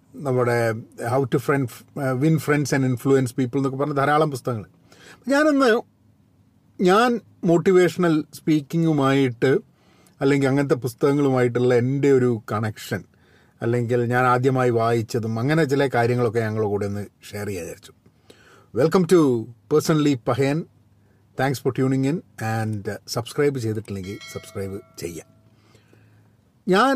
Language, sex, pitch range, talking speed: Malayalam, male, 115-150 Hz, 115 wpm